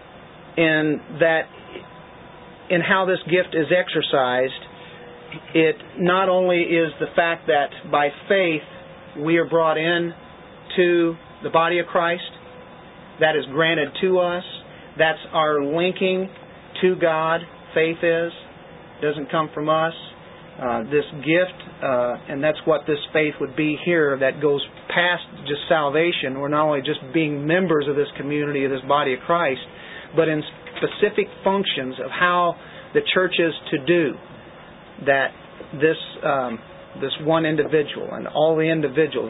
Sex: male